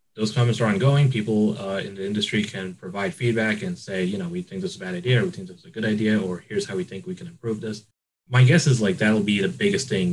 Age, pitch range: 20-39, 105-160 Hz